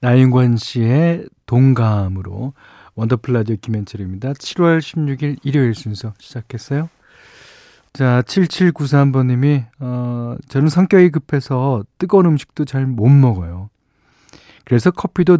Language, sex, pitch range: Korean, male, 115-155 Hz